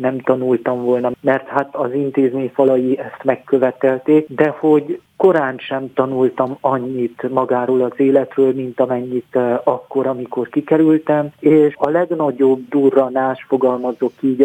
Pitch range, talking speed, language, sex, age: 125-140 Hz, 125 wpm, Hungarian, male, 40-59